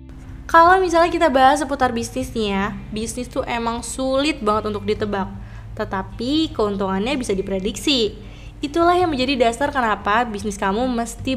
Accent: native